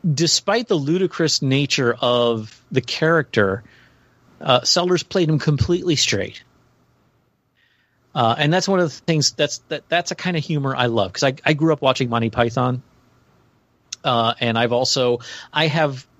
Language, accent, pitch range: English, American, 115-150 Hz